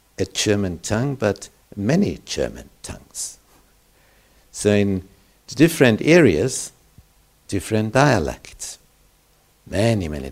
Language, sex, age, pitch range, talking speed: Romanian, male, 60-79, 85-120 Hz, 85 wpm